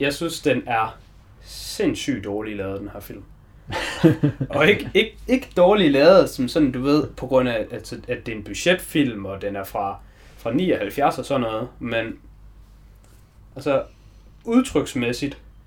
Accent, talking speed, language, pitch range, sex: native, 155 wpm, Danish, 105-150 Hz, male